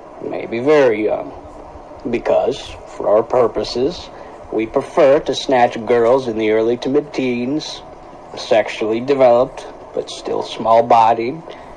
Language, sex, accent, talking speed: English, male, American, 120 wpm